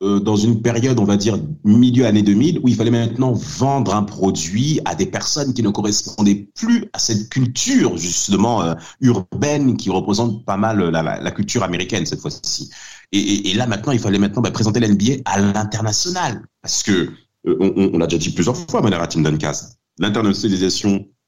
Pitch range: 95-155 Hz